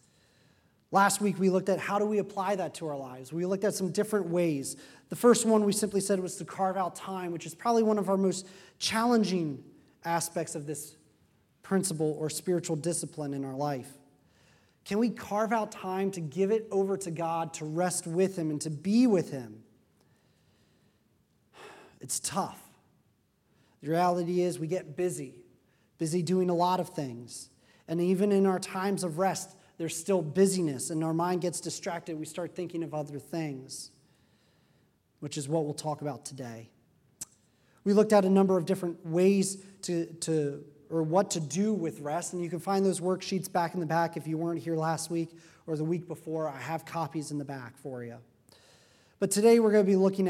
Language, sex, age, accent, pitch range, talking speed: English, male, 30-49, American, 155-190 Hz, 190 wpm